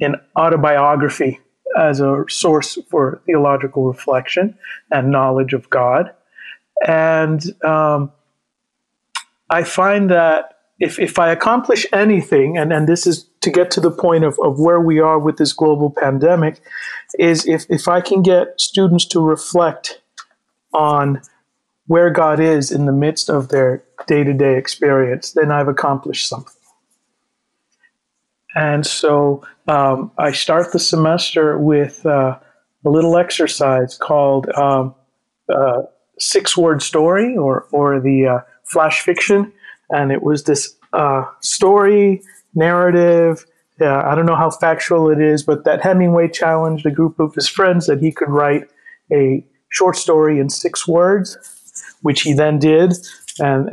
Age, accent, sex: 50-69, American, male